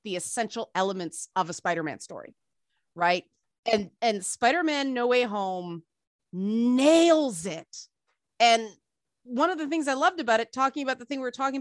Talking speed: 165 wpm